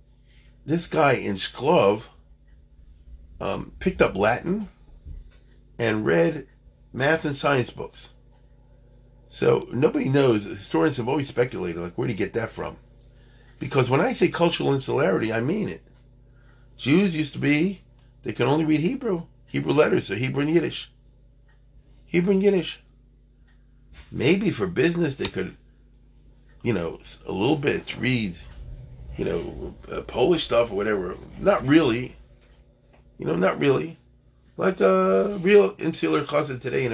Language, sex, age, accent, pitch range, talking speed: English, male, 40-59, American, 105-140 Hz, 140 wpm